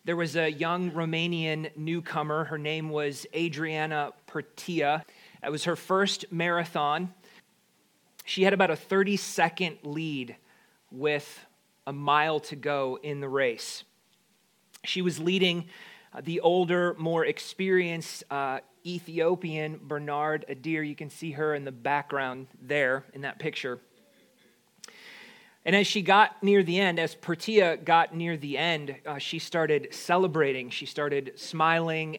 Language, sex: English, male